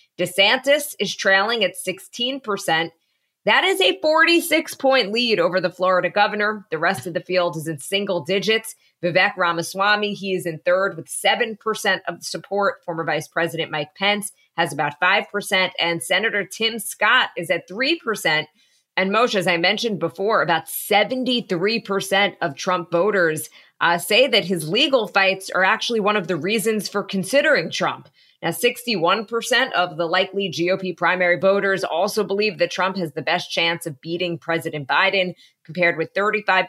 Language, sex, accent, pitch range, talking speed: English, female, American, 170-210 Hz, 160 wpm